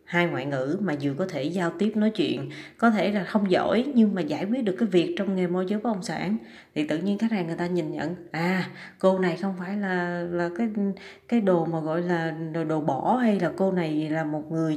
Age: 20-39